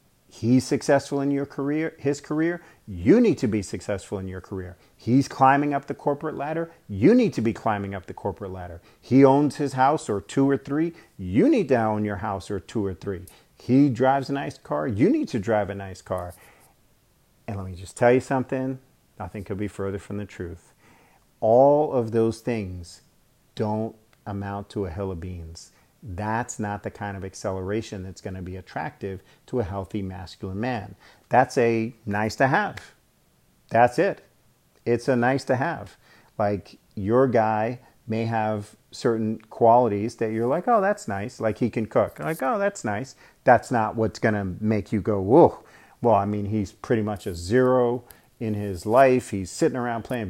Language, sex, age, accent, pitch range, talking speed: English, male, 40-59, American, 100-130 Hz, 190 wpm